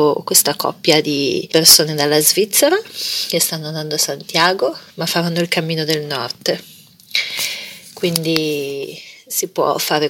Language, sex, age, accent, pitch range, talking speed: Italian, female, 30-49, native, 160-210 Hz, 125 wpm